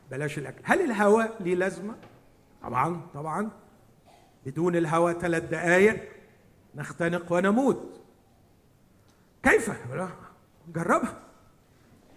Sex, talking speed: male, 80 wpm